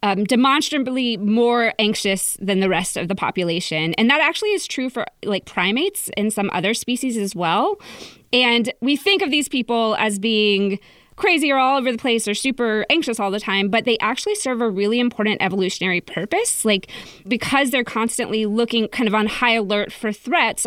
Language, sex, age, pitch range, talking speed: English, female, 20-39, 200-250 Hz, 190 wpm